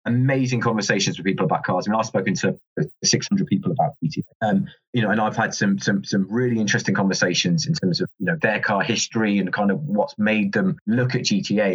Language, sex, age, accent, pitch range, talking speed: English, male, 20-39, British, 100-140 Hz, 225 wpm